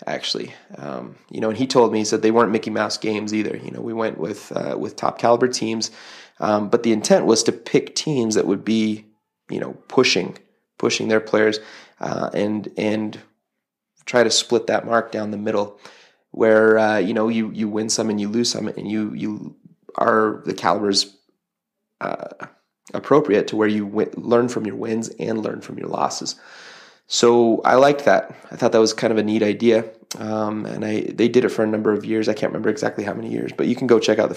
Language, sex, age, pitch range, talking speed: English, male, 30-49, 105-115 Hz, 220 wpm